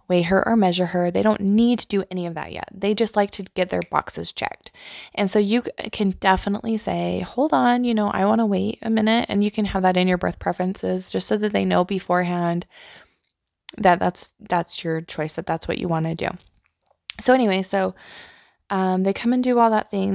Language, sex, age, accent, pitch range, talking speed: English, female, 20-39, American, 175-215 Hz, 230 wpm